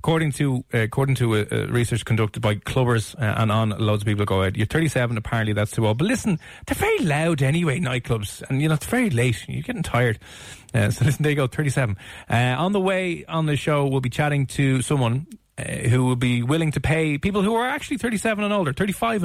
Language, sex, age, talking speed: English, male, 30-49, 225 wpm